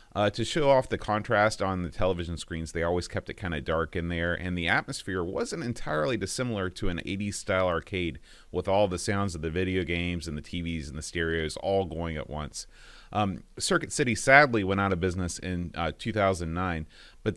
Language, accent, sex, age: English, American, male, 30-49